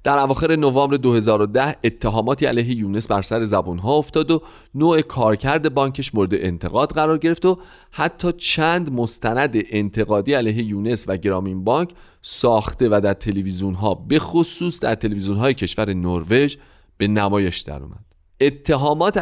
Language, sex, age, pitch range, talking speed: Persian, male, 40-59, 100-145 Hz, 145 wpm